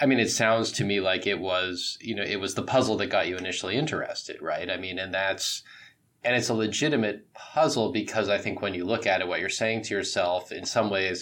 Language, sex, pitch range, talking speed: English, male, 95-115 Hz, 245 wpm